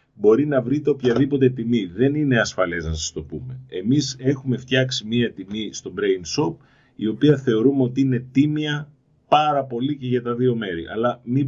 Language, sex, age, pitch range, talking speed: Greek, male, 40-59, 110-135 Hz, 185 wpm